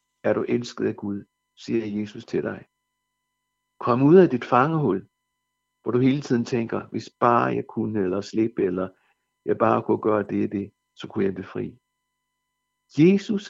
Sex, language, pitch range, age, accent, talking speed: male, Danish, 115-130 Hz, 60-79, native, 170 wpm